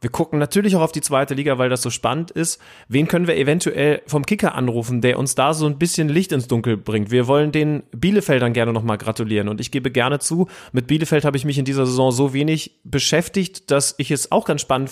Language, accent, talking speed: German, German, 240 wpm